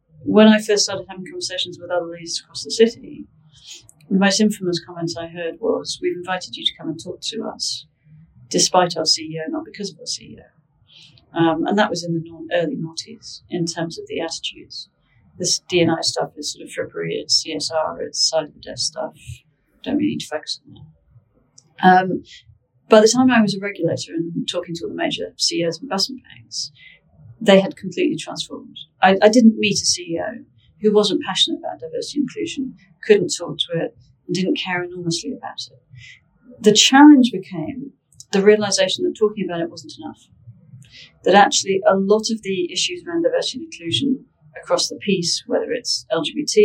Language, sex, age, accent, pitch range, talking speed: English, female, 40-59, British, 155-215 Hz, 190 wpm